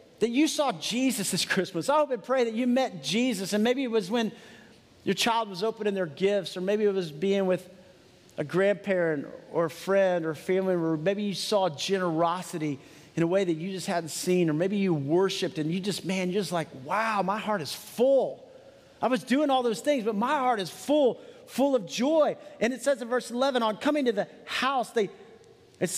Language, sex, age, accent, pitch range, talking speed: English, male, 40-59, American, 170-245 Hz, 215 wpm